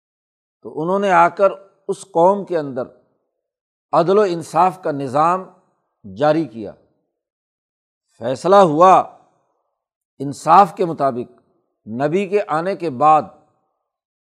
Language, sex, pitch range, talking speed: Urdu, male, 150-195 Hz, 110 wpm